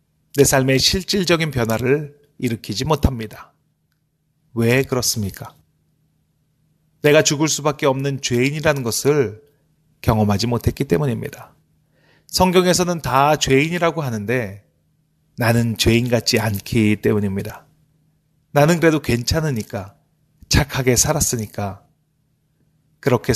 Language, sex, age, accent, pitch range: Korean, male, 30-49, native, 120-155 Hz